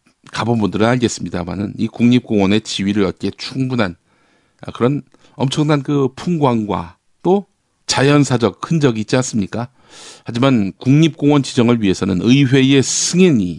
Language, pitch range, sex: Korean, 100-135 Hz, male